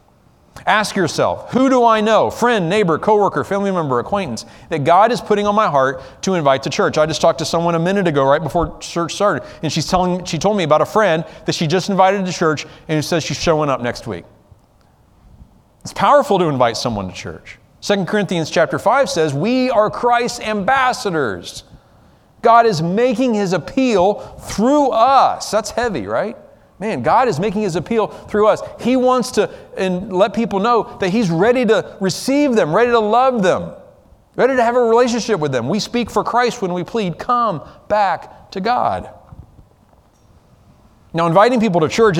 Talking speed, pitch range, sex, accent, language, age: 190 wpm, 155-225 Hz, male, American, English, 40-59